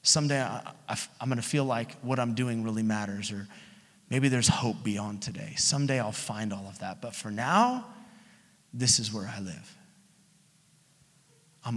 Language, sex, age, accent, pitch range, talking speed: English, male, 30-49, American, 125-185 Hz, 165 wpm